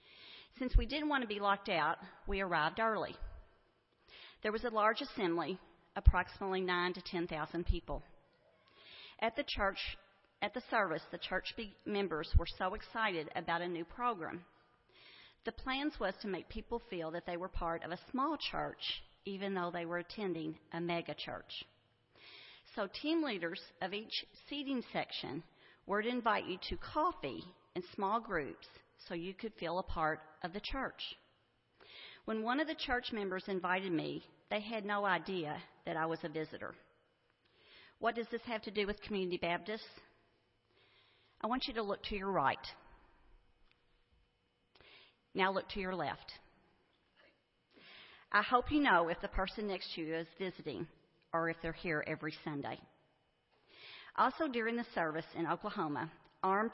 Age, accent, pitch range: 40-59, American, 170-220 Hz